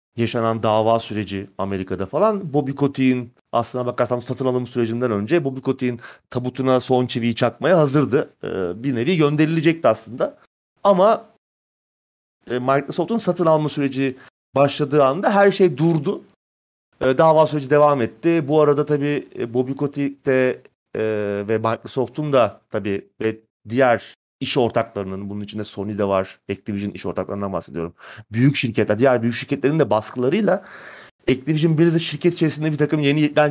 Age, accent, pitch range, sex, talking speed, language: 30-49, native, 115-145 Hz, male, 135 wpm, Turkish